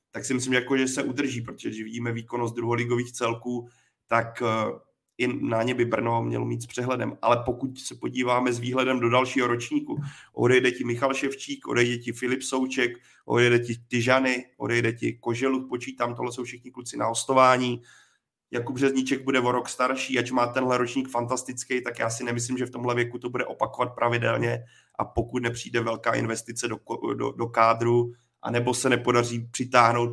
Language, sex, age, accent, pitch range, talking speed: Czech, male, 30-49, native, 115-130 Hz, 180 wpm